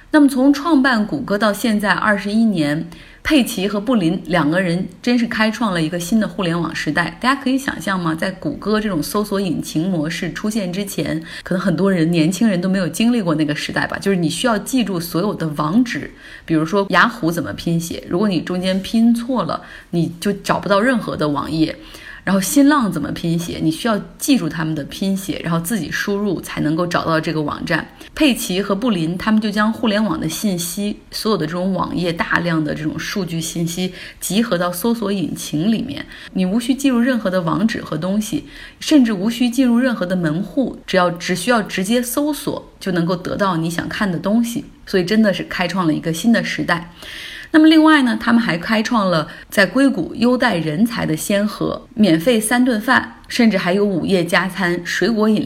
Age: 20-39